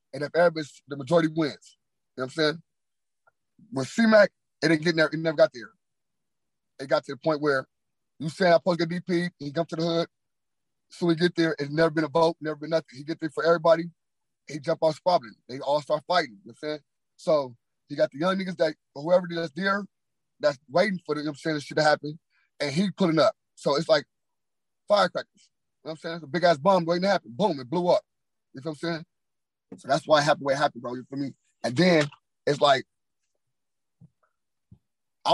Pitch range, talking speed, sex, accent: 145-175 Hz, 240 wpm, male, American